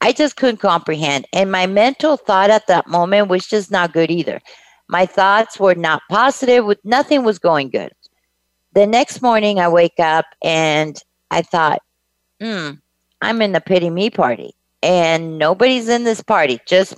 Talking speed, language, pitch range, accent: 170 wpm, English, 160-215 Hz, American